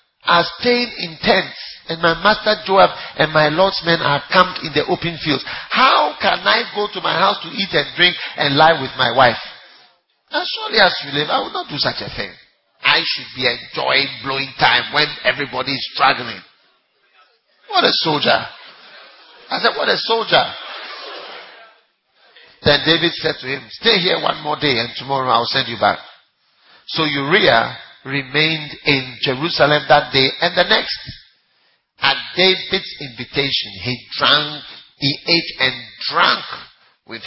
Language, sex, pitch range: English, male, 135-170 Hz